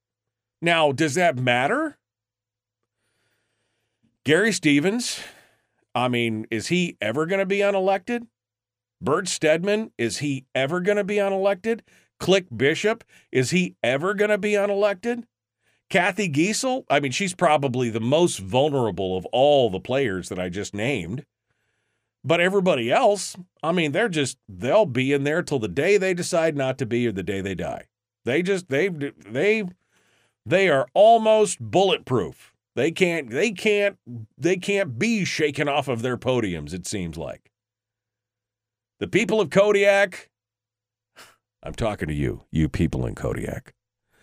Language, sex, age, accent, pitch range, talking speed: English, male, 40-59, American, 115-190 Hz, 150 wpm